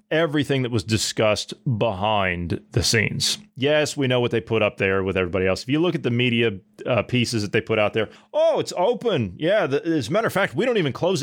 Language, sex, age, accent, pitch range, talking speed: English, male, 30-49, American, 105-135 Hz, 235 wpm